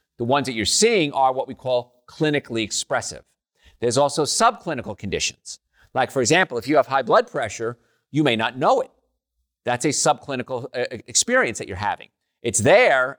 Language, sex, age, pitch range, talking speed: English, male, 40-59, 115-150 Hz, 175 wpm